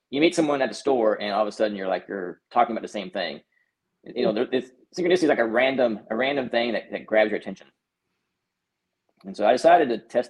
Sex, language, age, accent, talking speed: male, English, 20-39, American, 245 wpm